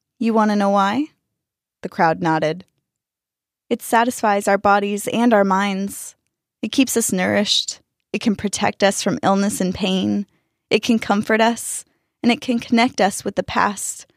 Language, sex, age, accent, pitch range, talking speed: English, female, 20-39, American, 190-225 Hz, 165 wpm